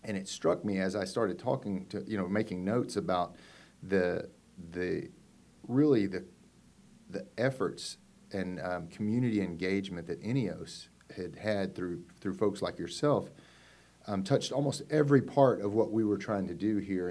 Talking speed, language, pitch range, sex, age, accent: 160 wpm, English, 90-105 Hz, male, 40-59, American